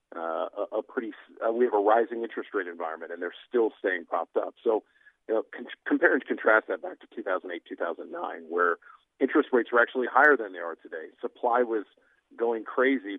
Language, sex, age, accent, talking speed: English, male, 50-69, American, 225 wpm